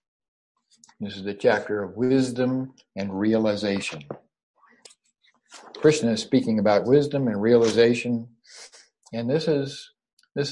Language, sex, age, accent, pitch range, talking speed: English, male, 60-79, American, 100-120 Hz, 110 wpm